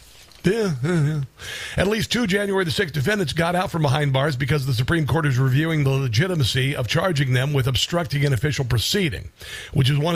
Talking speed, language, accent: 200 wpm, English, American